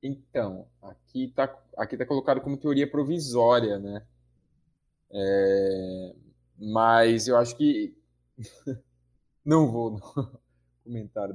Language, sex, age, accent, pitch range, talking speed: Portuguese, male, 20-39, Brazilian, 100-135 Hz, 100 wpm